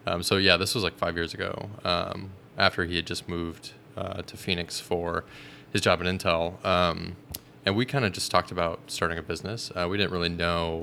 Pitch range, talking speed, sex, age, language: 85-95 Hz, 215 wpm, male, 20-39, English